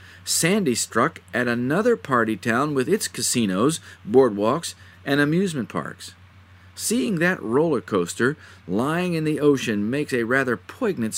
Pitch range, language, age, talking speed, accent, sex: 95-160 Hz, English, 50-69, 135 wpm, American, male